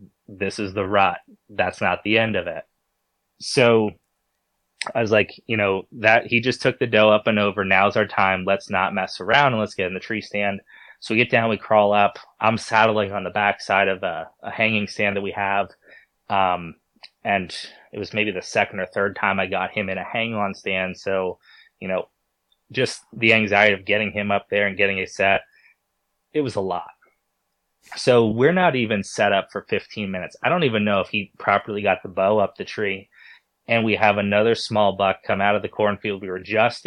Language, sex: English, male